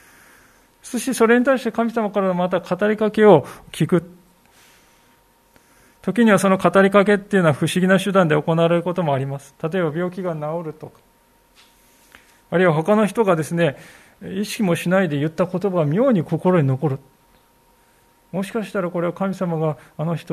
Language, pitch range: Japanese, 140-190 Hz